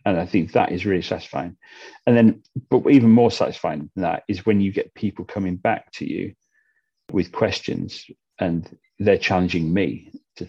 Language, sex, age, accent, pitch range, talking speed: English, male, 40-59, British, 95-120 Hz, 175 wpm